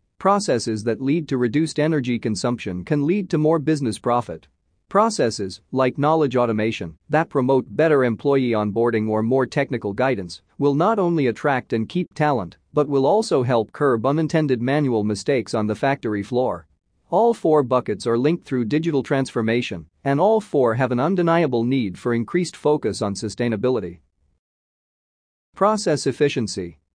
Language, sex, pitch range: English, male, 110-150 Hz